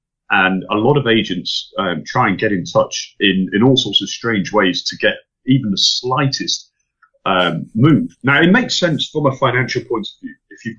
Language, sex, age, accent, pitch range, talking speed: English, male, 30-49, British, 100-150 Hz, 205 wpm